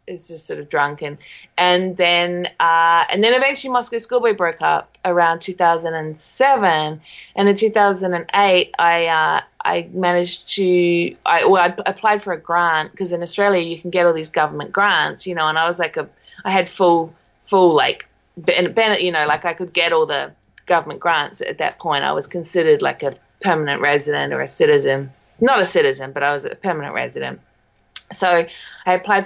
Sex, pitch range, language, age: female, 160-190 Hz, English, 20-39